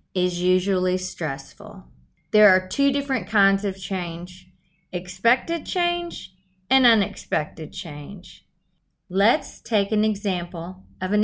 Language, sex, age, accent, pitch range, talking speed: English, female, 30-49, American, 170-205 Hz, 110 wpm